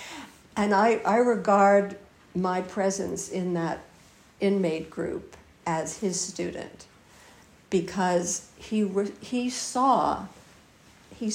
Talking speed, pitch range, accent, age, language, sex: 100 wpm, 175-225 Hz, American, 60-79, English, female